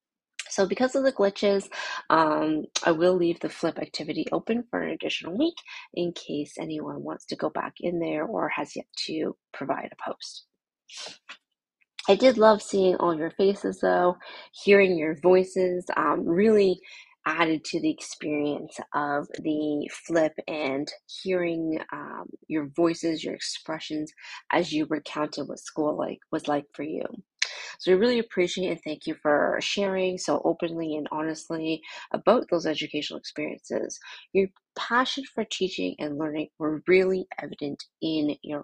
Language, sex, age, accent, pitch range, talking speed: English, female, 30-49, American, 155-200 Hz, 150 wpm